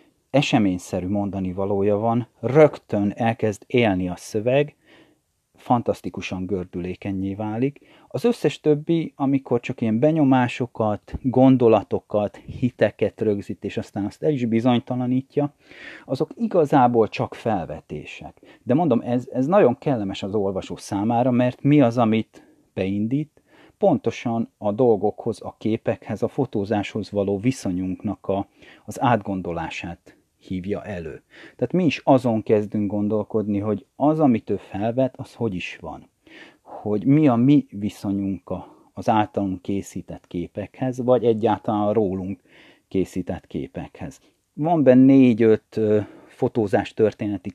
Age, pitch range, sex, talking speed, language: 30-49, 100-125 Hz, male, 120 wpm, Hungarian